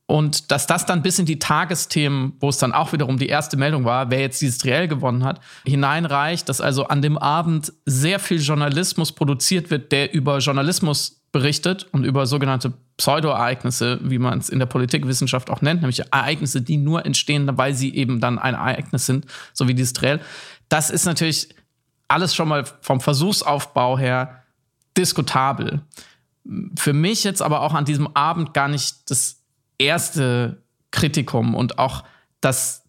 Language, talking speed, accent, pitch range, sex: German, 170 wpm, German, 135-160 Hz, male